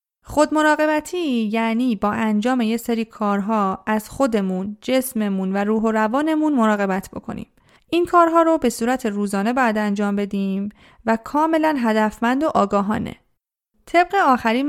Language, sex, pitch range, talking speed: Persian, female, 210-270 Hz, 130 wpm